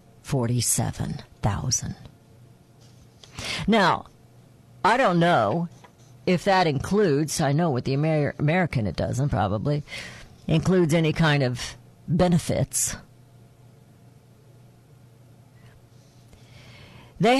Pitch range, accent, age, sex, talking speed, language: 125-180 Hz, American, 50-69, female, 80 wpm, English